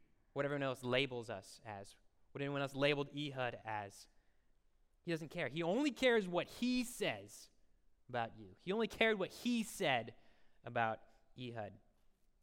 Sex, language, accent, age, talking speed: male, English, American, 20-39, 150 wpm